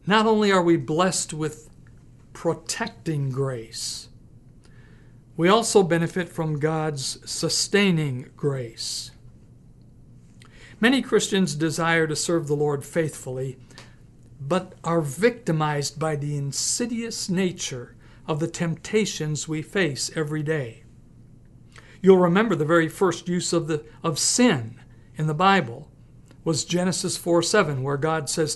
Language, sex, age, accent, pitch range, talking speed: English, male, 60-79, American, 130-175 Hz, 120 wpm